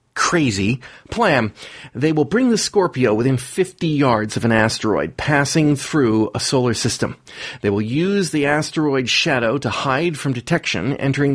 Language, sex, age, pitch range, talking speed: English, male, 40-59, 115-150 Hz, 155 wpm